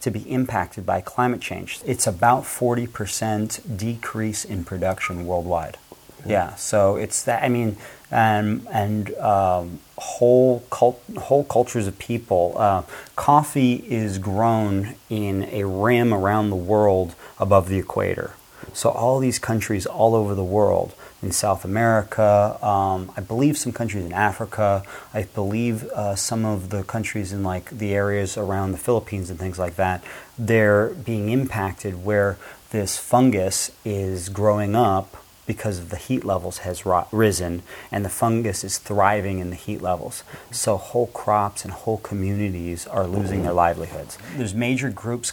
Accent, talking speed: American, 155 wpm